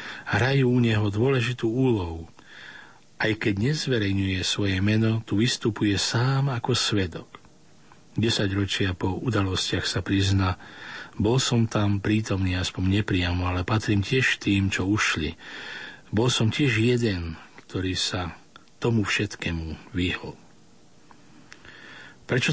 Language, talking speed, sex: Slovak, 115 wpm, male